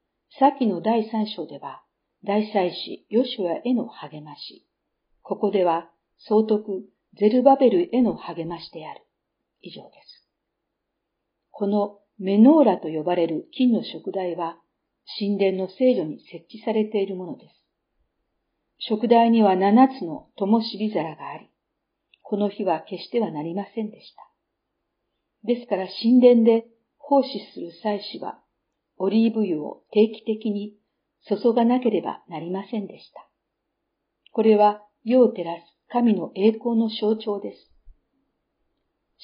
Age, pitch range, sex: 50-69, 185-230 Hz, female